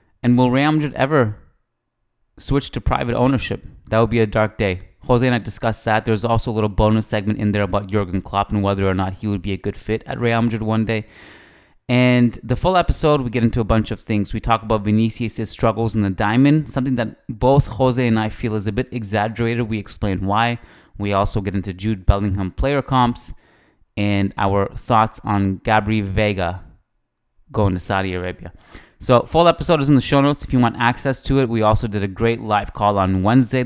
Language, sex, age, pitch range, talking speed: English, male, 20-39, 100-120 Hz, 215 wpm